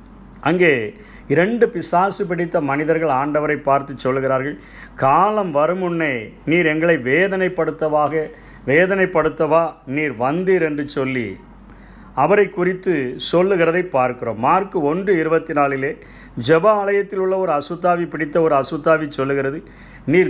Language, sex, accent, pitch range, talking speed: Tamil, male, native, 135-175 Hz, 110 wpm